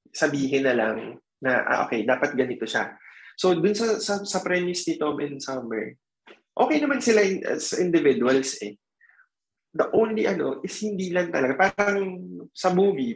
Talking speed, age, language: 165 wpm, 20-39, English